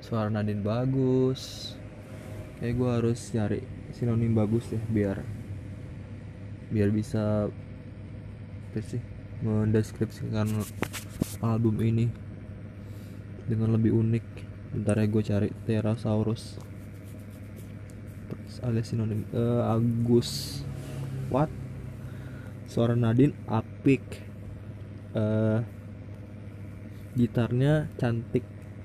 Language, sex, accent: Indonesian, male, native